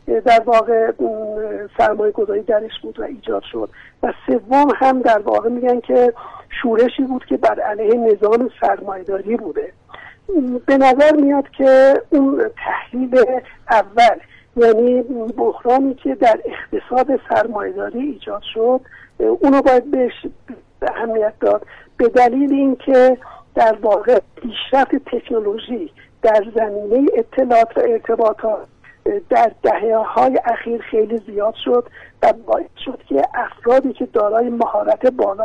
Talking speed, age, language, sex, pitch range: 120 wpm, 60-79, Persian, male, 225-275 Hz